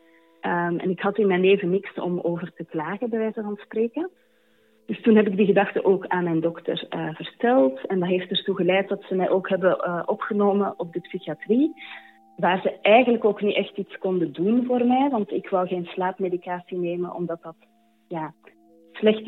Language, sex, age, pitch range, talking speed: Dutch, female, 30-49, 170-200 Hz, 195 wpm